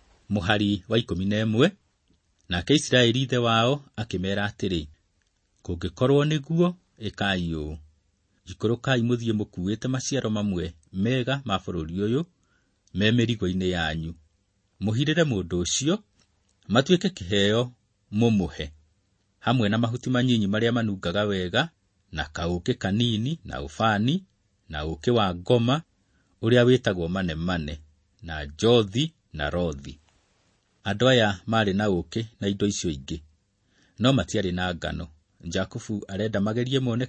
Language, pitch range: English, 90-120 Hz